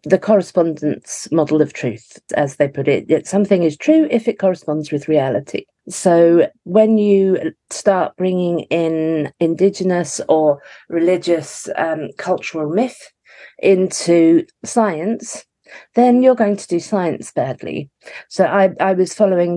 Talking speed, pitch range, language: 135 wpm, 165-210 Hz, English